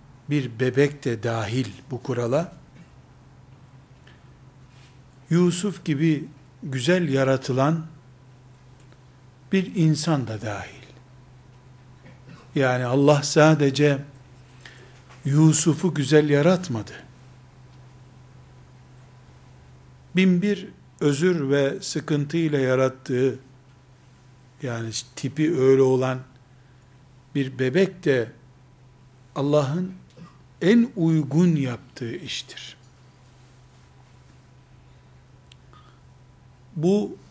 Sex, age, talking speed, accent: male, 60-79, 65 wpm, native